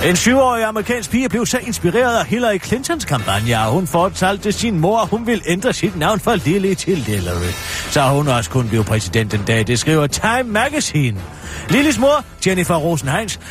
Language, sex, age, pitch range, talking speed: Danish, male, 30-49, 130-205 Hz, 185 wpm